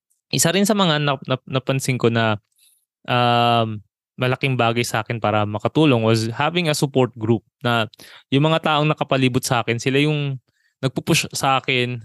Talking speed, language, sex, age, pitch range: 160 wpm, Filipino, male, 20-39, 120-145 Hz